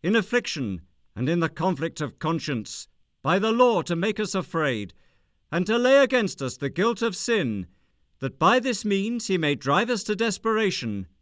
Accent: British